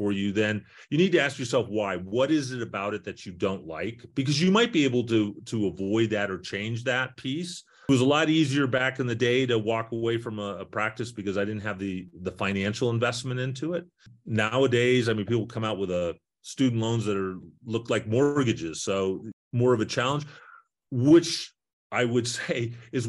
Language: English